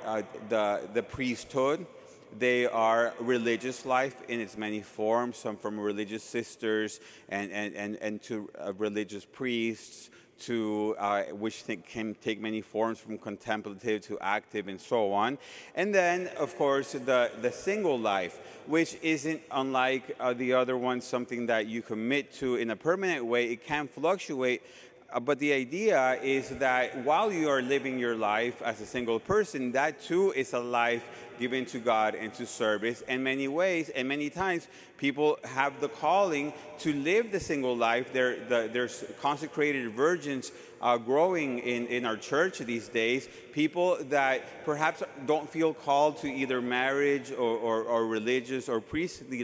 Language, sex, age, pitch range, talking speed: English, male, 30-49, 110-140 Hz, 165 wpm